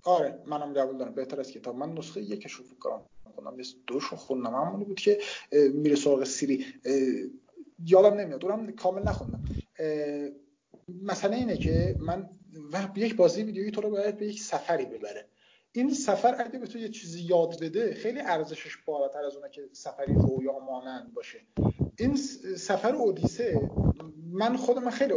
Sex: male